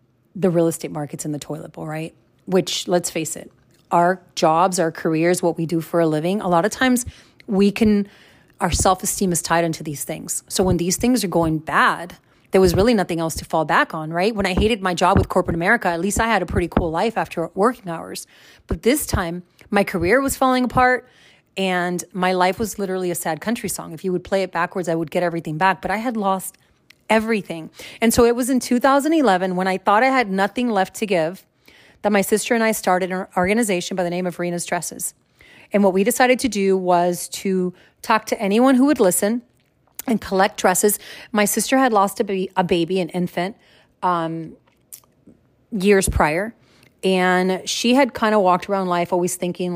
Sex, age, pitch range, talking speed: female, 30-49, 170-210 Hz, 210 wpm